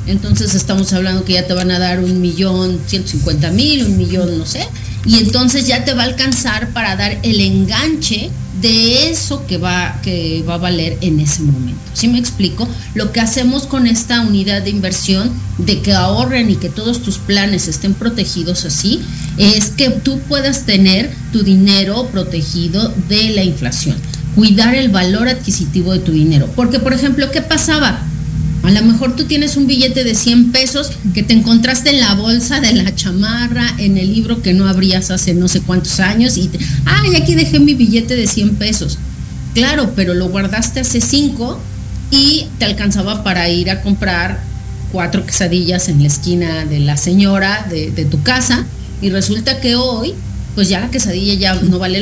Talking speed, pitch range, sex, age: 185 wpm, 155-230 Hz, female, 40-59